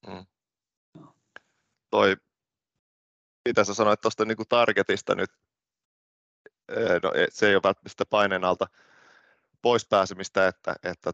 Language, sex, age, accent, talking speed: Finnish, male, 20-39, native, 100 wpm